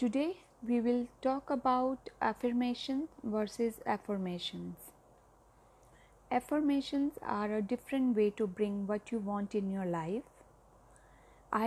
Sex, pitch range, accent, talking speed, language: female, 200-260 Hz, native, 115 wpm, Hindi